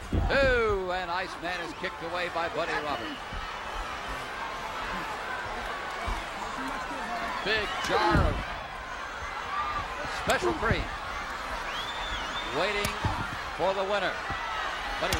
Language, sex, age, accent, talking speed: English, male, 60-79, American, 75 wpm